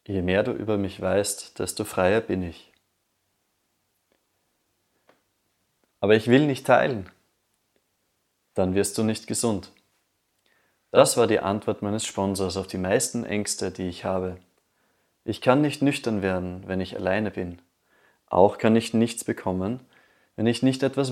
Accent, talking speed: German, 145 wpm